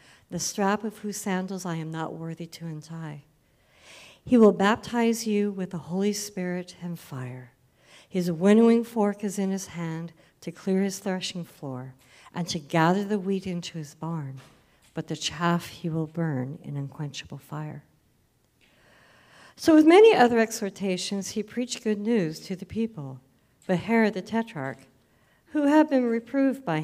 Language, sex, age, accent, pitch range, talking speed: English, female, 60-79, American, 150-195 Hz, 160 wpm